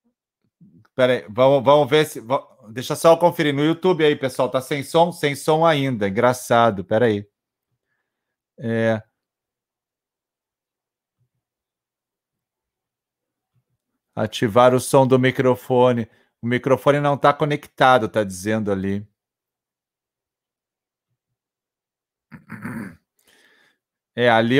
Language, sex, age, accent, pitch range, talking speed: Portuguese, male, 40-59, Brazilian, 110-140 Hz, 95 wpm